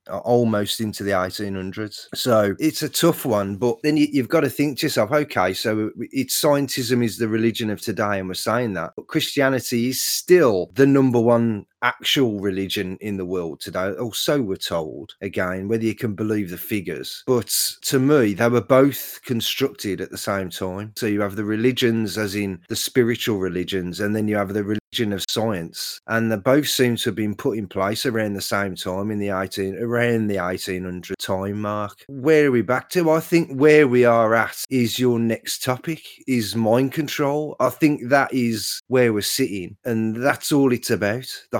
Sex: male